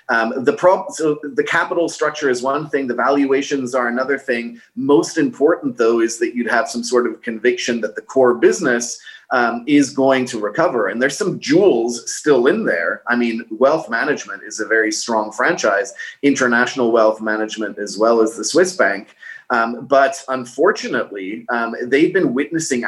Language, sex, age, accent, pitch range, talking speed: English, male, 30-49, Canadian, 115-155 Hz, 170 wpm